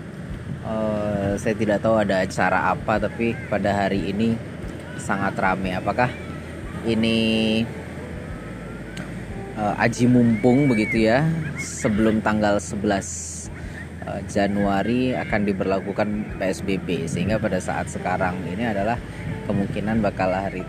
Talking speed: 105 wpm